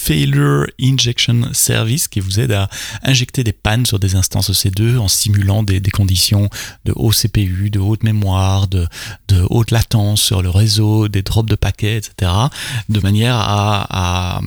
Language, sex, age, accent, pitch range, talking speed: French, male, 30-49, French, 100-125 Hz, 185 wpm